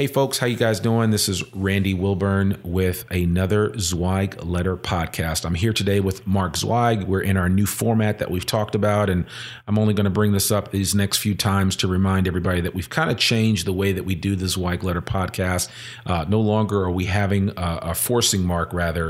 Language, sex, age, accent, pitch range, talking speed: English, male, 40-59, American, 90-105 Hz, 220 wpm